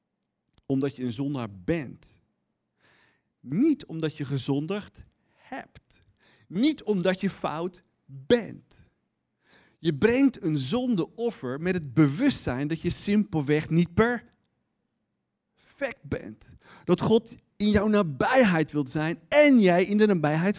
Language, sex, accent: Dutch, male, Dutch